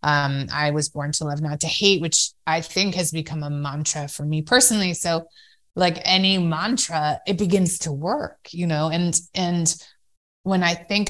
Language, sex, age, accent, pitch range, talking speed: English, female, 20-39, American, 150-175 Hz, 185 wpm